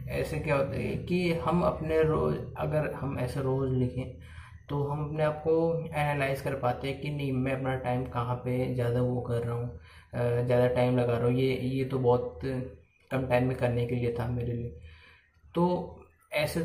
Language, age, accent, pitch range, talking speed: Hindi, 20-39, native, 125-150 Hz, 195 wpm